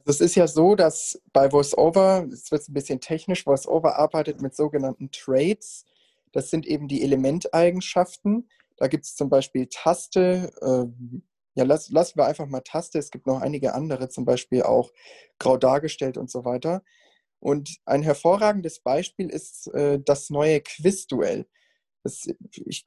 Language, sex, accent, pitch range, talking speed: German, male, German, 140-180 Hz, 160 wpm